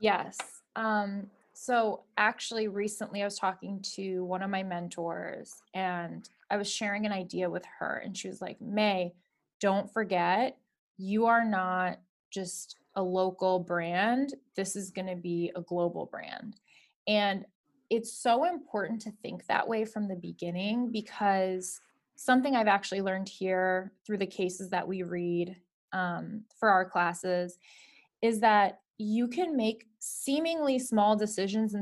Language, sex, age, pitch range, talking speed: English, female, 20-39, 185-225 Hz, 150 wpm